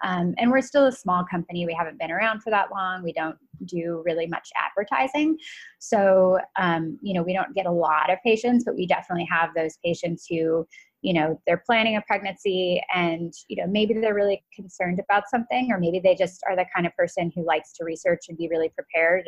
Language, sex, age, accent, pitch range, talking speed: English, female, 20-39, American, 160-195 Hz, 220 wpm